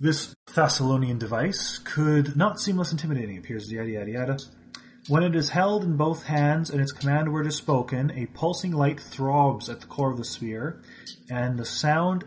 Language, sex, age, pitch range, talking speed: English, male, 30-49, 130-165 Hz, 190 wpm